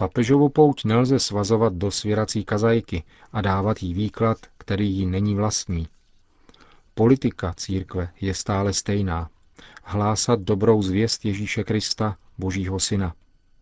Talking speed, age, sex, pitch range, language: 120 wpm, 40-59, male, 100-115 Hz, Czech